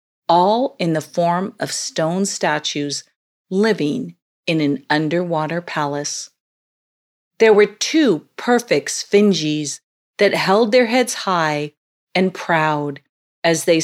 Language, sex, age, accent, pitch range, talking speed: English, female, 40-59, American, 155-210 Hz, 115 wpm